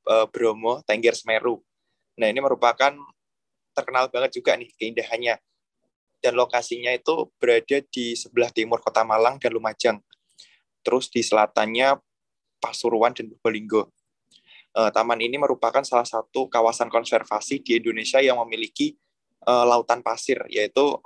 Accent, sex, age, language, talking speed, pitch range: native, male, 20-39, Indonesian, 120 wpm, 115-155 Hz